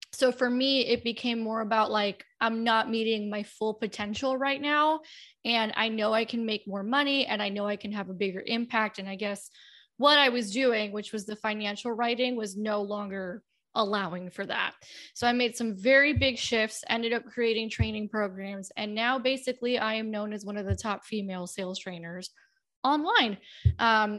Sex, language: female, English